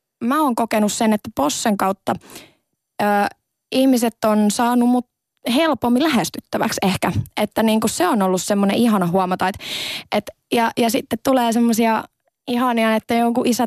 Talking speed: 150 wpm